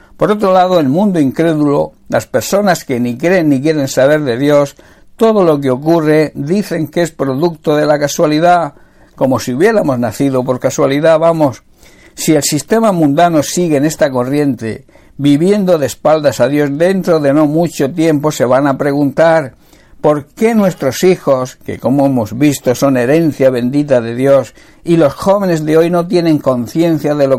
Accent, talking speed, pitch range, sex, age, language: Spanish, 175 wpm, 135-165 Hz, male, 60-79, Spanish